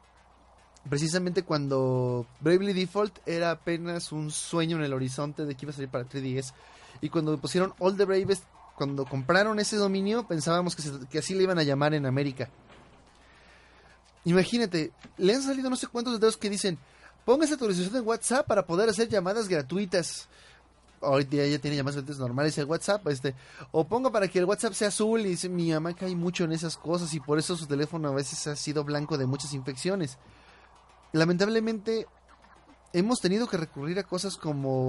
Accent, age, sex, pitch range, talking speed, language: Mexican, 30-49, male, 145-200 Hz, 185 wpm, Spanish